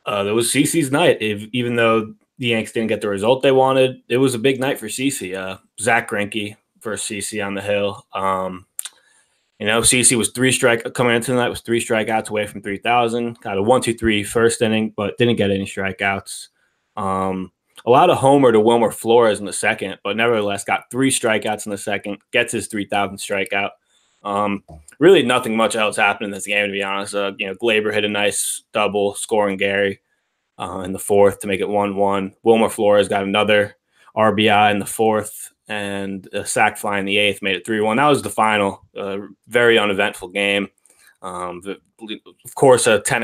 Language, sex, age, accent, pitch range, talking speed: English, male, 20-39, American, 100-115 Hz, 200 wpm